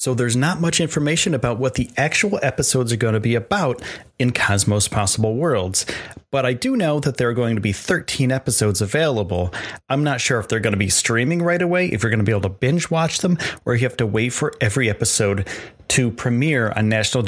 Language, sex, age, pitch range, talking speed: English, male, 30-49, 110-140 Hz, 225 wpm